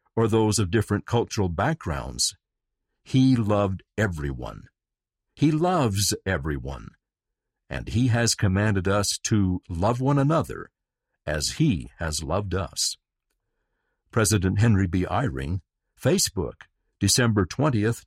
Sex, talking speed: male, 110 wpm